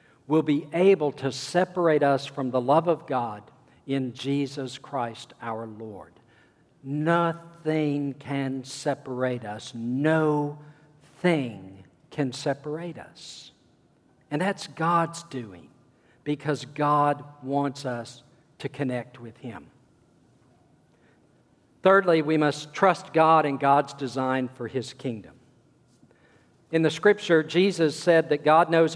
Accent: American